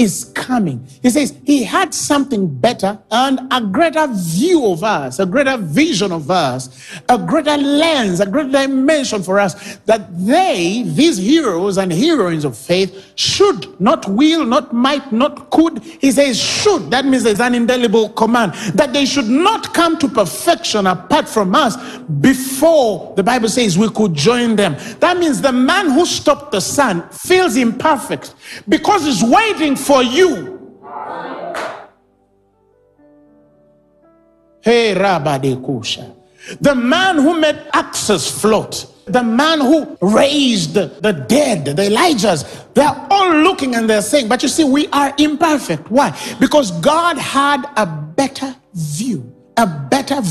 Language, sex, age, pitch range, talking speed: English, male, 50-69, 185-295 Hz, 145 wpm